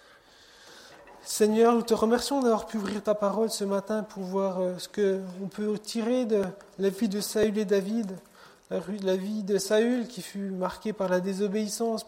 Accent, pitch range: French, 185-210 Hz